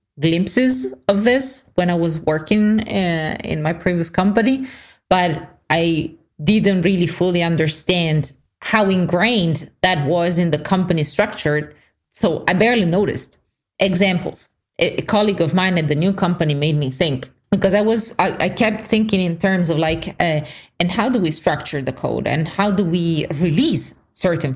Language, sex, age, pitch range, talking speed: English, female, 30-49, 150-195 Hz, 165 wpm